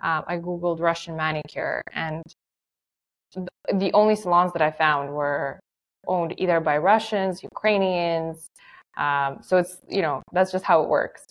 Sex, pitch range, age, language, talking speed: female, 155-185 Hz, 20-39, English, 155 wpm